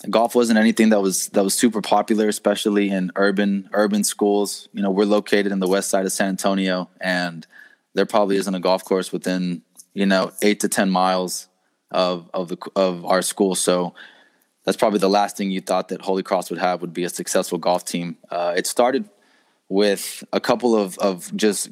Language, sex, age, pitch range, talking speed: English, male, 20-39, 95-105 Hz, 200 wpm